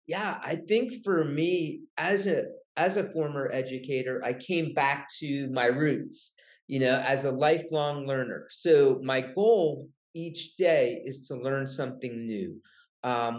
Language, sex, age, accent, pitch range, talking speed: English, male, 40-59, American, 135-185 Hz, 150 wpm